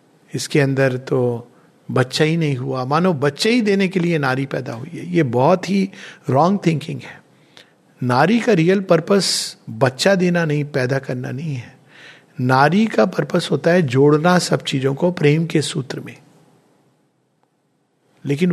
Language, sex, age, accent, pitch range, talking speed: Hindi, male, 50-69, native, 145-195 Hz, 155 wpm